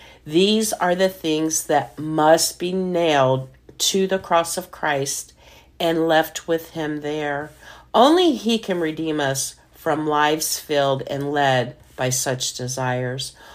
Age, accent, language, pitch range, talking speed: 50-69, American, English, 135-170 Hz, 135 wpm